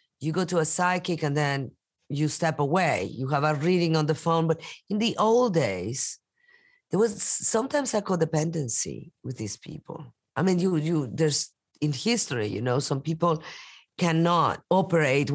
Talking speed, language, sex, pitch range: 170 wpm, English, female, 140-170 Hz